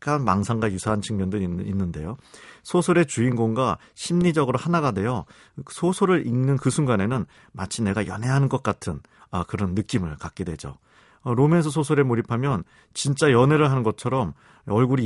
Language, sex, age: Korean, male, 40-59